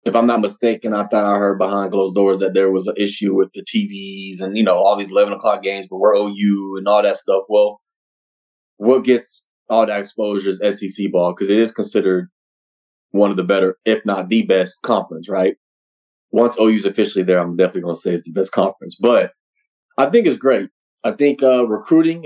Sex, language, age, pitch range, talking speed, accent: male, English, 30-49, 95-115 Hz, 215 wpm, American